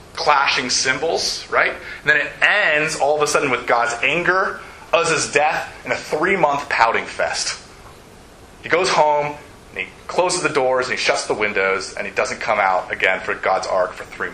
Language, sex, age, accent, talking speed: English, male, 30-49, American, 190 wpm